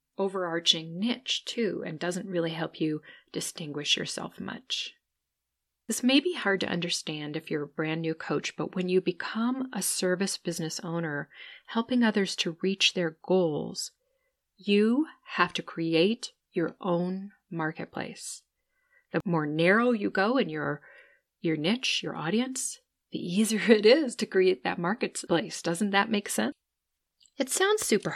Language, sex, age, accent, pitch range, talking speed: English, female, 40-59, American, 170-225 Hz, 150 wpm